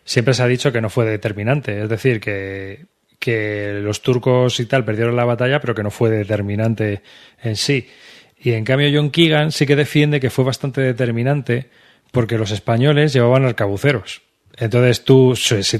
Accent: Spanish